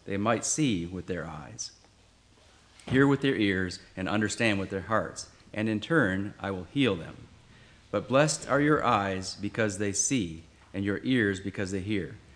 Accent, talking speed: American, 175 wpm